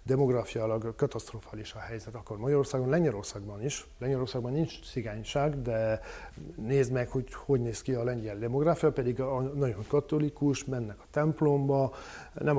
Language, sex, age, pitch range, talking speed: Hungarian, male, 40-59, 110-140 Hz, 135 wpm